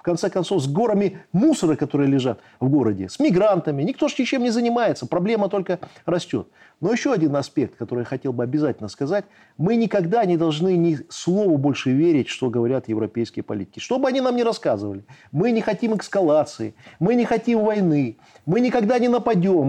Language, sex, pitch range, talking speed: Russian, male, 160-245 Hz, 185 wpm